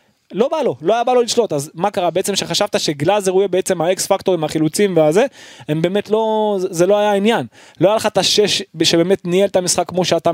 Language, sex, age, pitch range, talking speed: Hebrew, male, 20-39, 160-220 Hz, 225 wpm